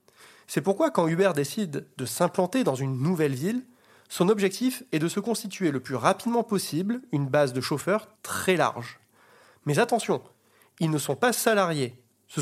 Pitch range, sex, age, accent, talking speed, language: 140-210 Hz, male, 30-49, French, 170 wpm, French